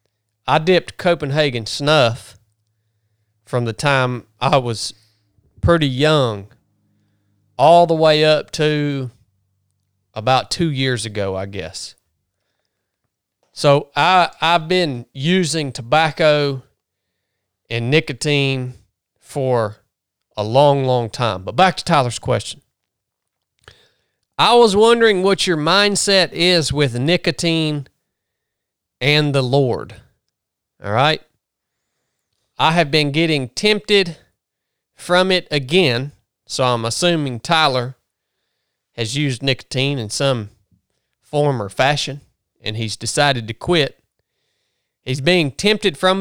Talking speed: 105 wpm